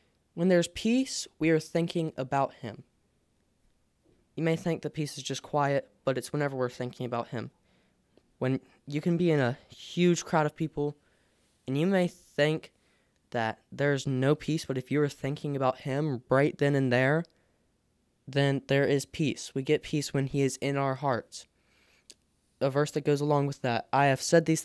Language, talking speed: English, 185 wpm